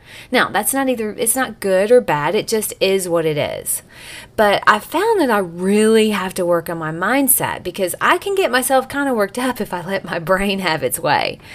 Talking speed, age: 230 wpm, 30-49